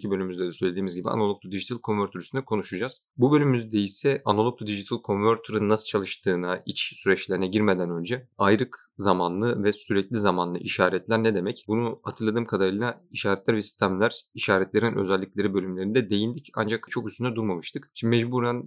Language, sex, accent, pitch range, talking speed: Turkish, male, native, 95-110 Hz, 150 wpm